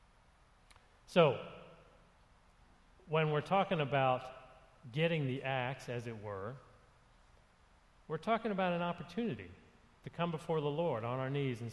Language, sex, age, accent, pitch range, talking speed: English, male, 40-59, American, 110-150 Hz, 130 wpm